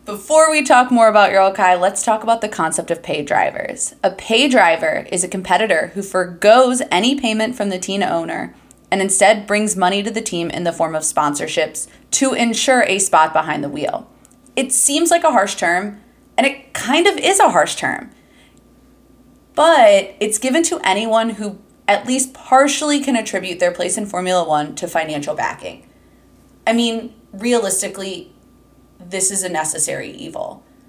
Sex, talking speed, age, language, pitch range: female, 175 wpm, 20-39, English, 175-235 Hz